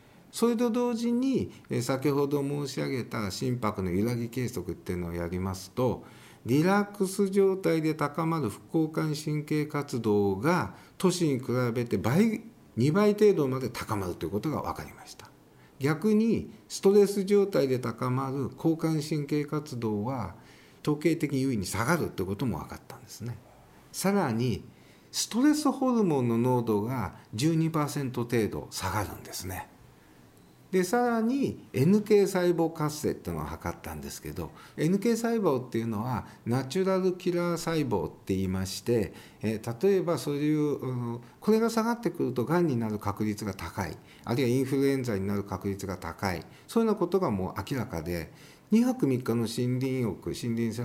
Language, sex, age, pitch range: Japanese, male, 50-69, 110-175 Hz